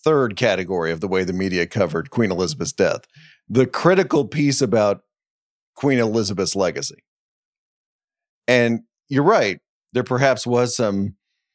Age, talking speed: 40-59, 130 wpm